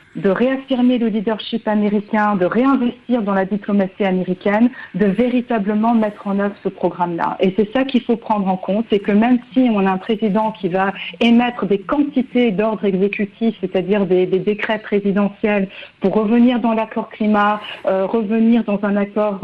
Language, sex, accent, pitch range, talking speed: French, female, French, 195-235 Hz, 175 wpm